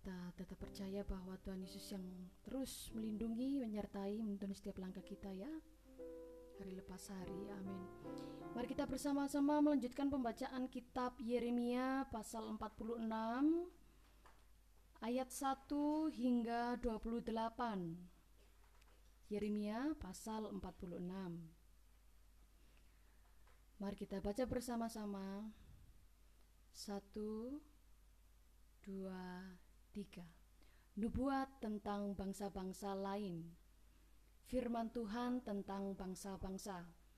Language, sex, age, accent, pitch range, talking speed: Indonesian, female, 20-39, native, 190-235 Hz, 80 wpm